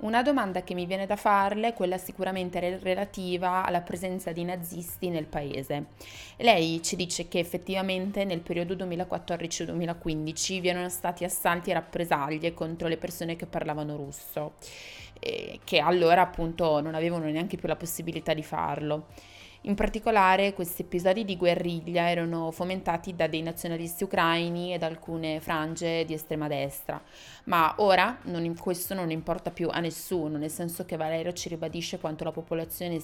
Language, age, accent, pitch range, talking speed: Italian, 20-39, native, 160-180 Hz, 155 wpm